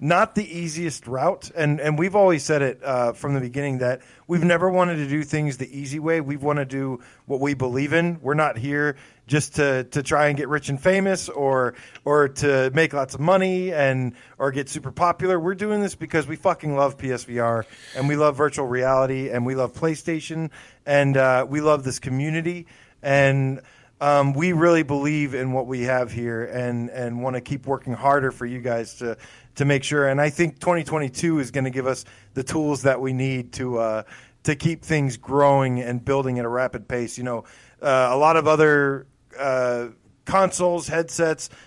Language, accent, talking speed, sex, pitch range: English, American, 200 wpm, male, 125-155 Hz